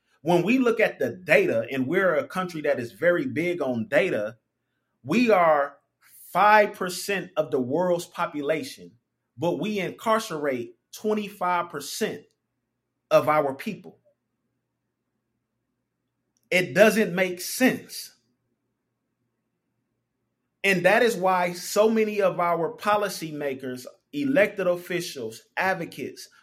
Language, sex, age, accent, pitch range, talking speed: English, male, 30-49, American, 130-195 Hz, 105 wpm